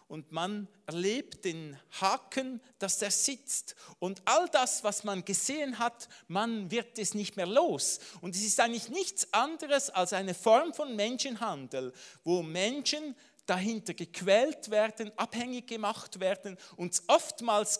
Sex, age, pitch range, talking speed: male, 50-69, 190-260 Hz, 140 wpm